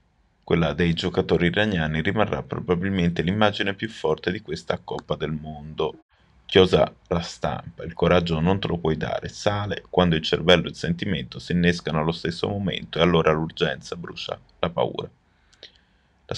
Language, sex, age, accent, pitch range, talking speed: Italian, male, 30-49, native, 80-90 Hz, 160 wpm